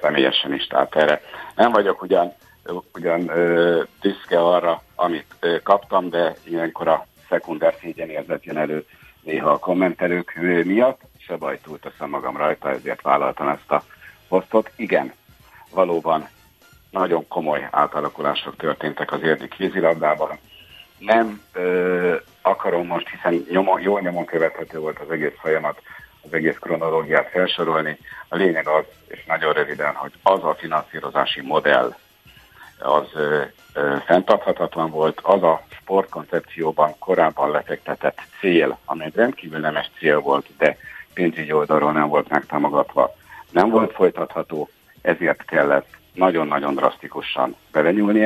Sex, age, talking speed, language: male, 60-79, 125 wpm, Hungarian